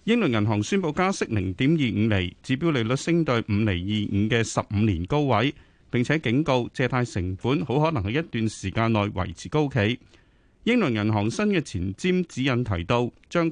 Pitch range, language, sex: 105-145 Hz, Chinese, male